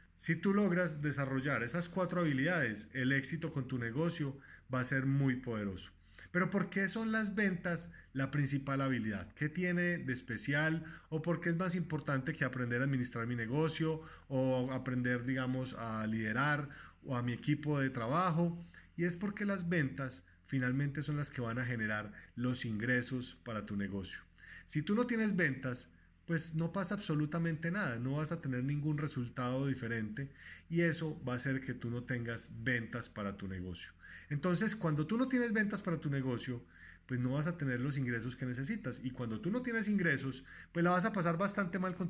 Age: 20-39